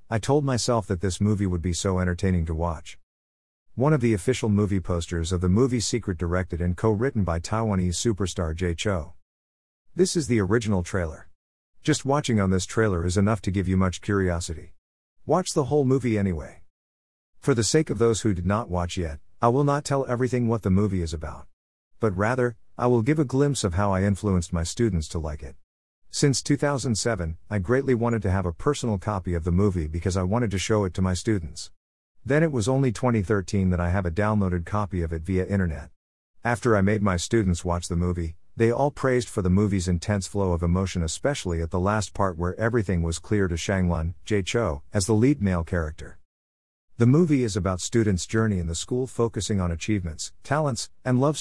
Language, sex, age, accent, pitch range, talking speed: English, male, 50-69, American, 85-115 Hz, 205 wpm